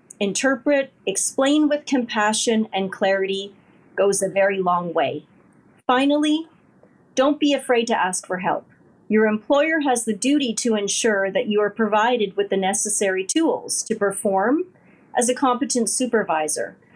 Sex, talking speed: female, 140 wpm